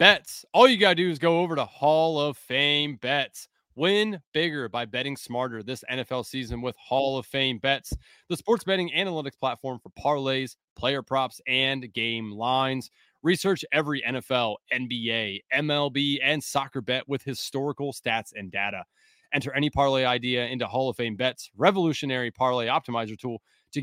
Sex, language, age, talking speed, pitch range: male, English, 30-49, 165 wpm, 125-150 Hz